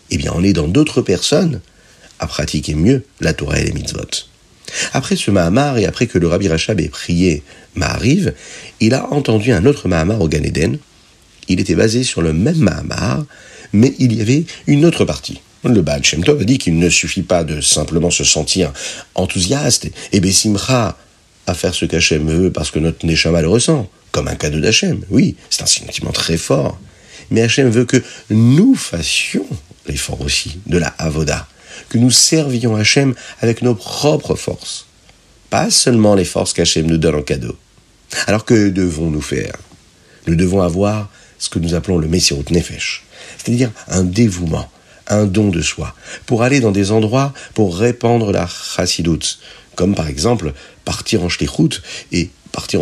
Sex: male